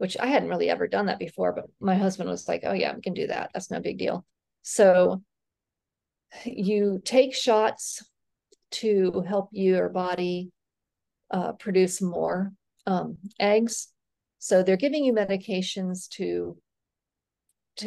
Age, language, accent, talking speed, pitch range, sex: 40-59, English, American, 145 wpm, 180-210 Hz, female